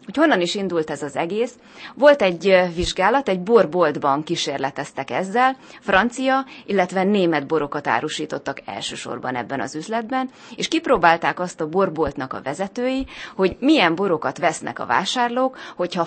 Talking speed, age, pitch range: 140 wpm, 30-49, 160-235 Hz